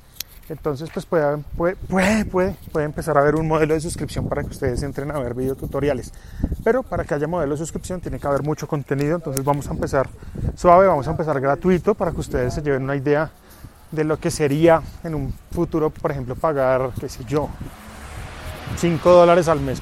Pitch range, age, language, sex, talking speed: 140-175 Hz, 30-49, Spanish, male, 190 wpm